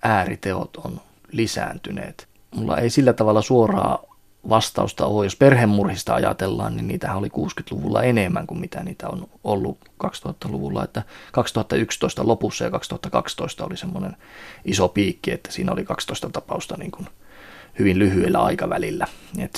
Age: 30-49